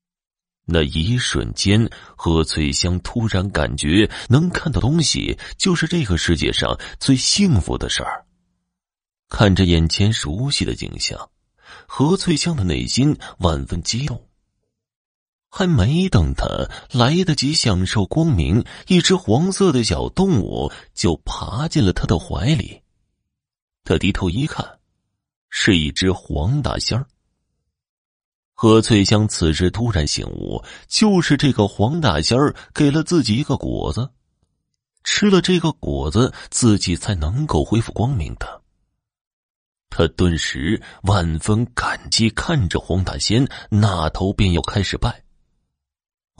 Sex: male